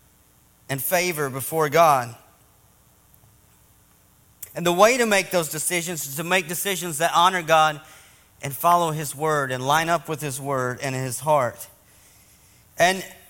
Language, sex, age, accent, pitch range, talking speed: English, male, 40-59, American, 140-190 Hz, 145 wpm